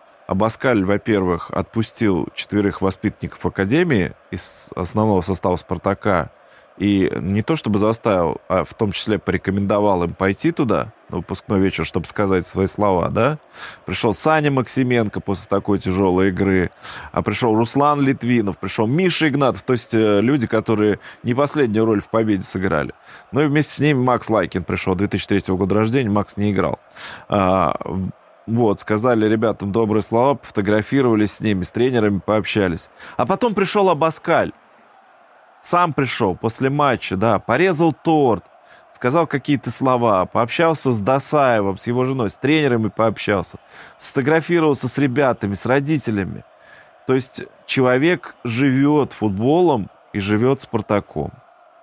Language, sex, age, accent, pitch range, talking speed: Russian, male, 20-39, native, 100-135 Hz, 135 wpm